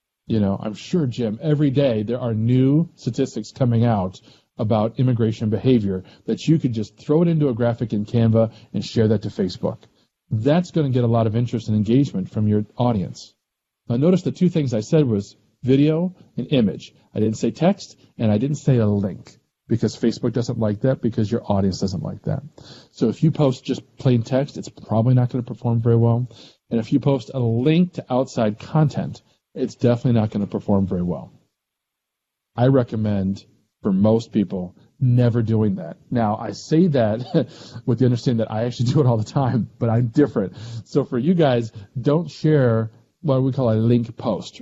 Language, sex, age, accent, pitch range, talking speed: English, male, 40-59, American, 110-135 Hz, 200 wpm